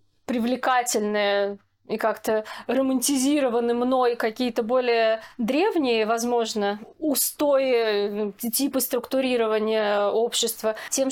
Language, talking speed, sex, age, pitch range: Russian, 75 wpm, female, 20-39, 230-285 Hz